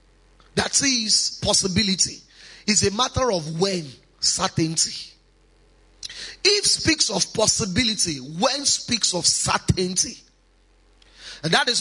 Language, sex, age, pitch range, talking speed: English, male, 30-49, 180-235 Hz, 100 wpm